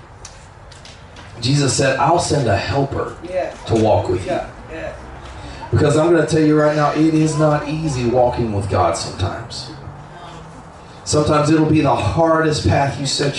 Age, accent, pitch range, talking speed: 30-49, American, 125-170 Hz, 155 wpm